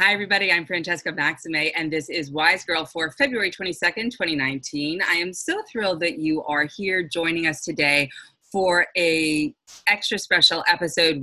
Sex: female